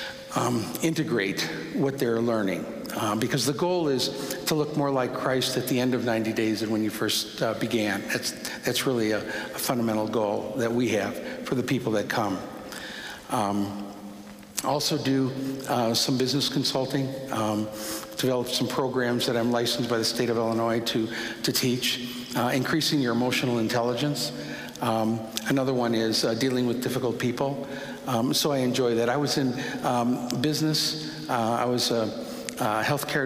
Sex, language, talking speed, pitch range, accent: male, English, 170 wpm, 115-135 Hz, American